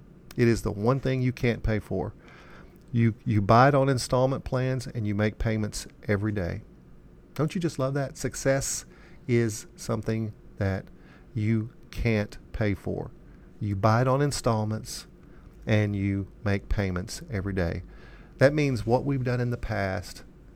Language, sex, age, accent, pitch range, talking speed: English, male, 40-59, American, 100-125 Hz, 160 wpm